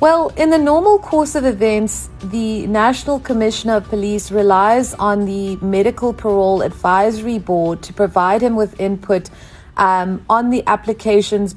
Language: English